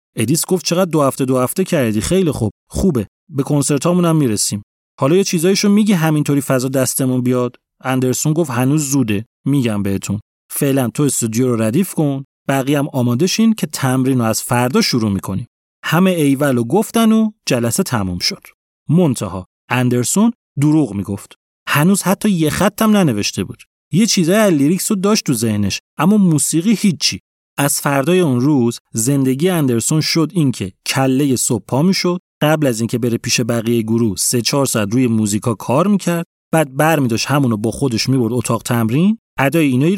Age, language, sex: 30-49, Persian, male